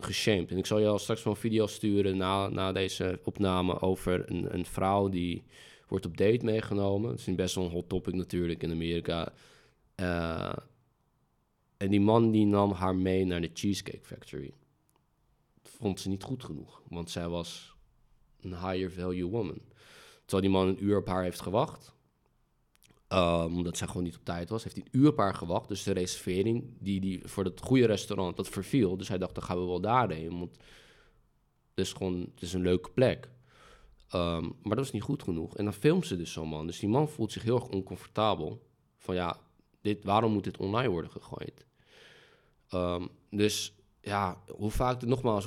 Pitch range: 90-110 Hz